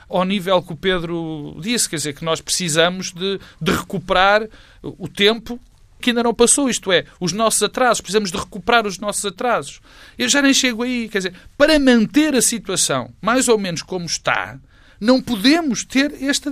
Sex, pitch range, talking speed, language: male, 155-245 Hz, 185 wpm, Portuguese